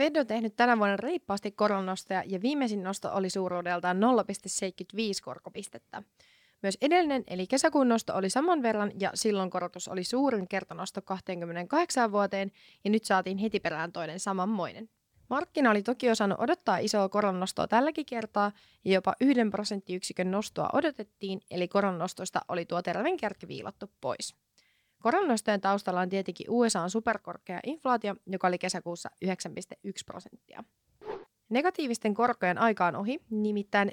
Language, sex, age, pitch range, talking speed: Finnish, female, 20-39, 185-235 Hz, 135 wpm